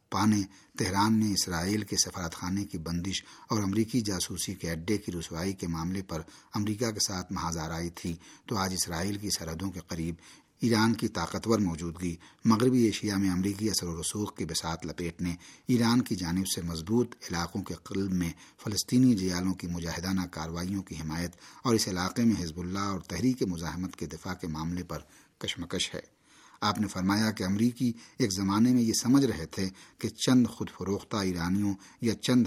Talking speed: 180 wpm